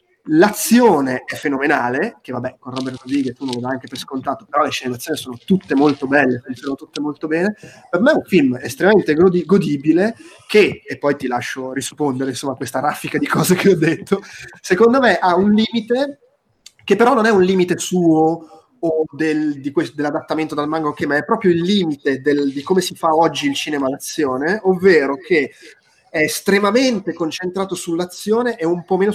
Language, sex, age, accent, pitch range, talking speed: Italian, male, 30-49, native, 140-185 Hz, 185 wpm